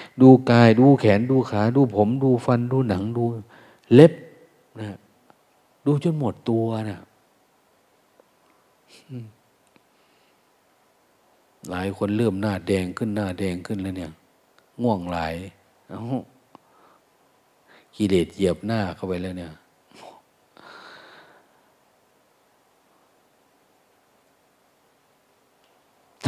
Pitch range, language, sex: 95-125 Hz, Thai, male